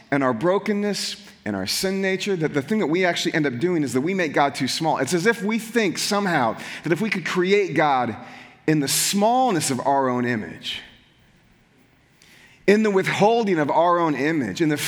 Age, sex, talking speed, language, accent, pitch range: 30-49, male, 205 wpm, English, American, 135-195 Hz